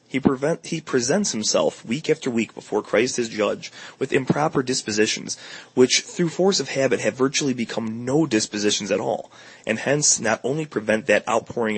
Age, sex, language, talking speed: 30-49, male, English, 175 wpm